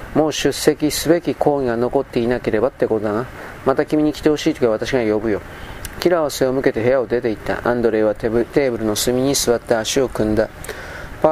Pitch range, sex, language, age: 115-135 Hz, male, Japanese, 40-59